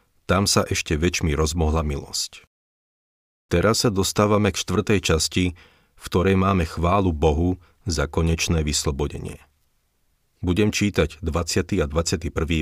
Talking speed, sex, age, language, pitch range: 120 wpm, male, 40-59, Slovak, 80-95 Hz